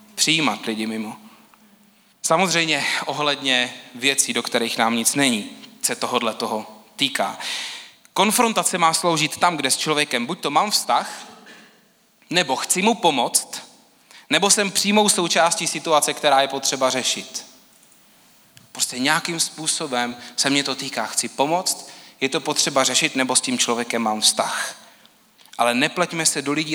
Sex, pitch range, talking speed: male, 130-190 Hz, 140 wpm